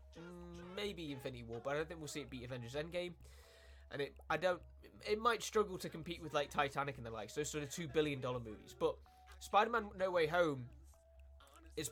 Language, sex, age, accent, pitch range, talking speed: Danish, male, 20-39, British, 125-175 Hz, 210 wpm